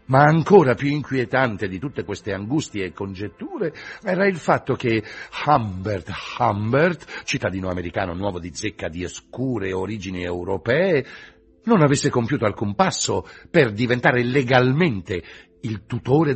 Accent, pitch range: native, 100-140 Hz